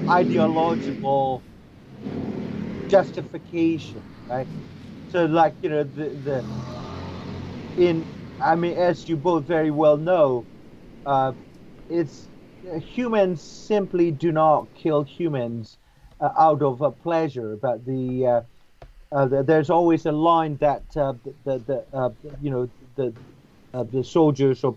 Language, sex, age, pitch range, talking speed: English, male, 40-59, 130-165 Hz, 135 wpm